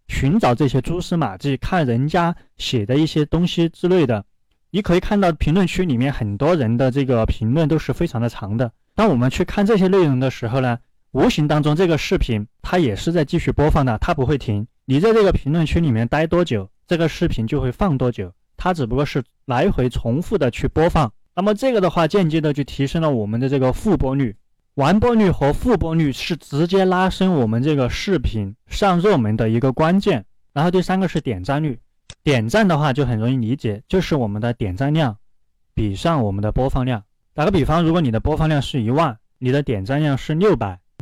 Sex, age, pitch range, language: male, 20-39, 120-170 Hz, Chinese